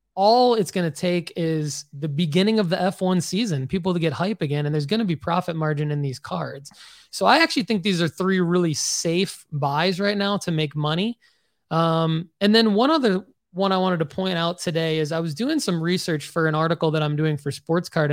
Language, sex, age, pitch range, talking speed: English, male, 20-39, 155-185 Hz, 230 wpm